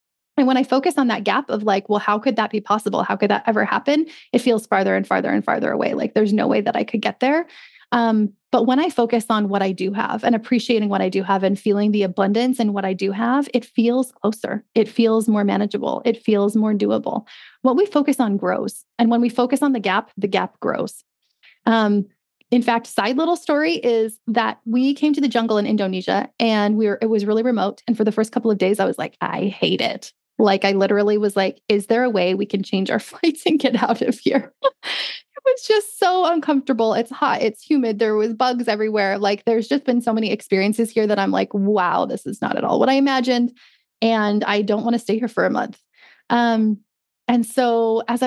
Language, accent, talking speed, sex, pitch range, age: English, American, 235 wpm, female, 210-250 Hz, 20-39